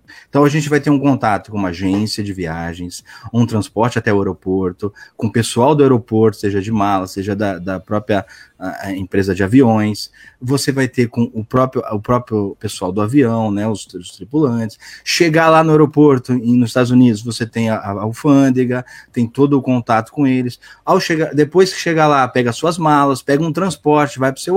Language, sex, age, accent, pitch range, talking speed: Portuguese, male, 20-39, Brazilian, 110-150 Hz, 200 wpm